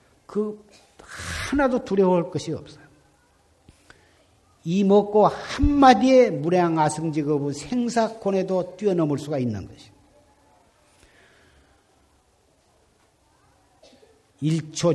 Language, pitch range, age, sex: Korean, 125-175 Hz, 50-69, male